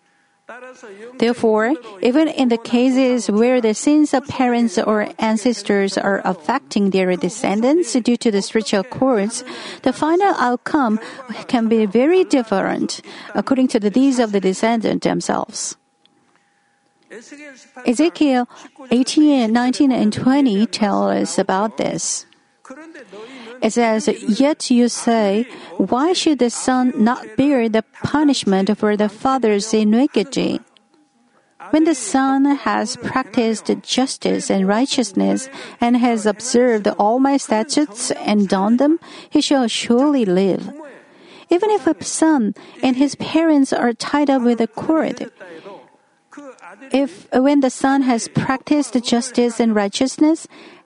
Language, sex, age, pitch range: Korean, female, 50-69, 220-280 Hz